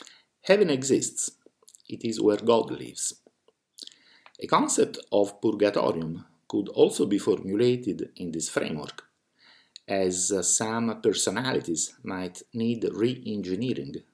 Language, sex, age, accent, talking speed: English, male, 50-69, Italian, 100 wpm